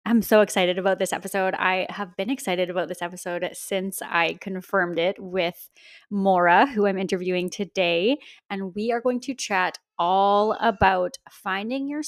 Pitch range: 175-205 Hz